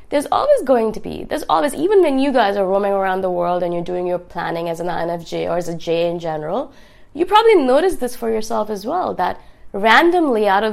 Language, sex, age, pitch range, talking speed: English, female, 20-39, 190-265 Hz, 235 wpm